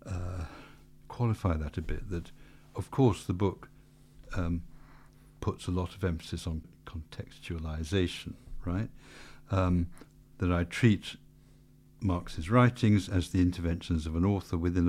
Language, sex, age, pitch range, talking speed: English, male, 60-79, 85-115 Hz, 130 wpm